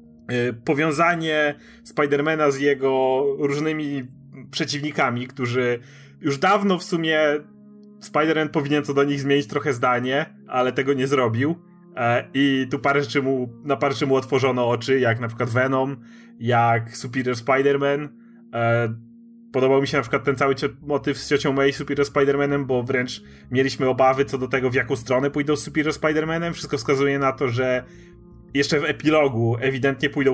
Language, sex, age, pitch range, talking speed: Polish, male, 30-49, 125-150 Hz, 155 wpm